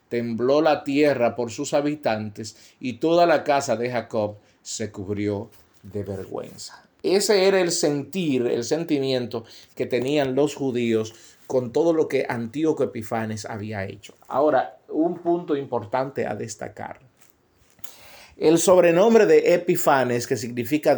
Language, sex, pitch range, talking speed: Spanish, male, 115-150 Hz, 130 wpm